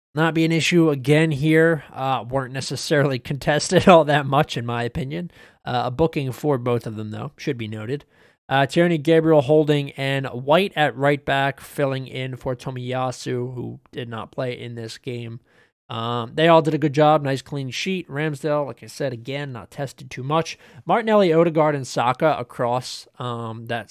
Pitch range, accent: 125-155 Hz, American